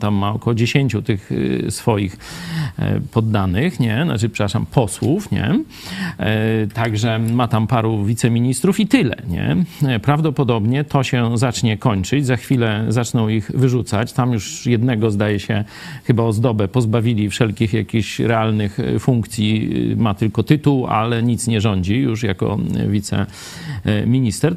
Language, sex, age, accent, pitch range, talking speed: Polish, male, 40-59, native, 115-145 Hz, 125 wpm